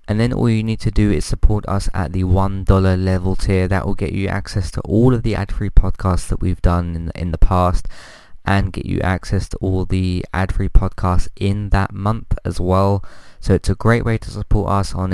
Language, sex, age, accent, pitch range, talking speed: English, male, 20-39, British, 90-110 Hz, 220 wpm